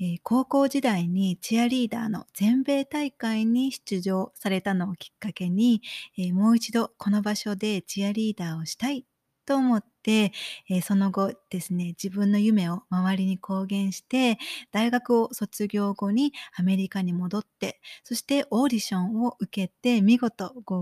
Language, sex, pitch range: Japanese, female, 190-235 Hz